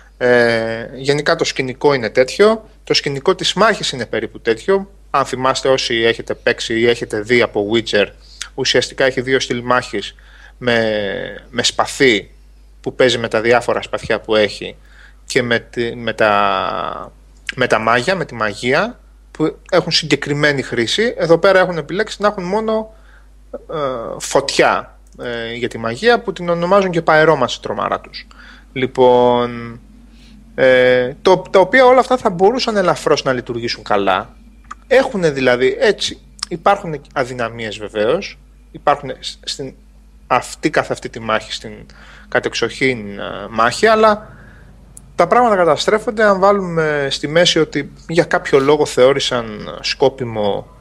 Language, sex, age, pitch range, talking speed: Greek, male, 30-49, 120-185 Hz, 135 wpm